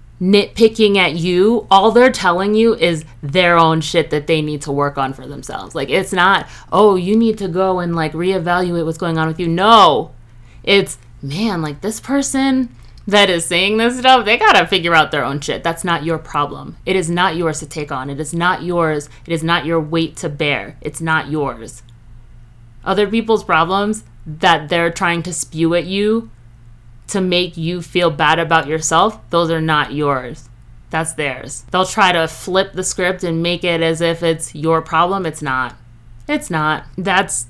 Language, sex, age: English, female, 30-49